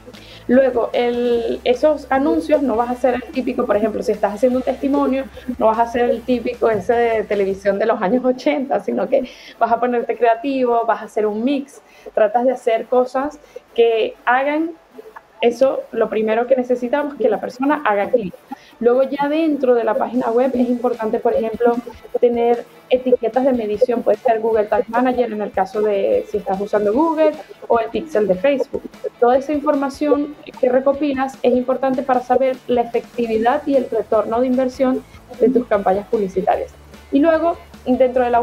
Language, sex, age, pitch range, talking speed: Spanish, female, 10-29, 230-270 Hz, 180 wpm